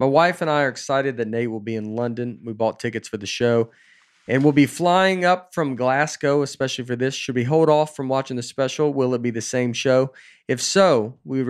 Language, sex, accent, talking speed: English, male, American, 235 wpm